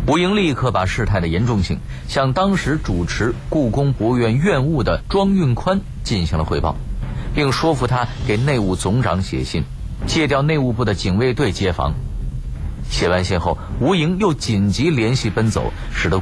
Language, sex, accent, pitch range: Chinese, male, native, 85-125 Hz